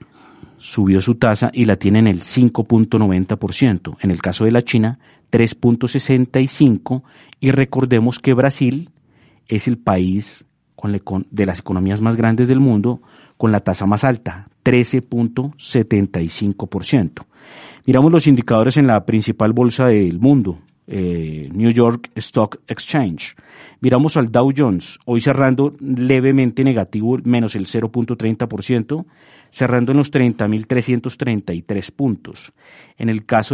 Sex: male